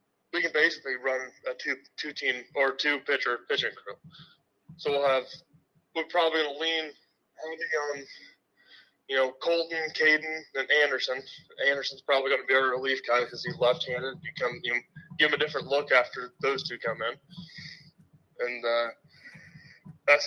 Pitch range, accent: 135-165 Hz, American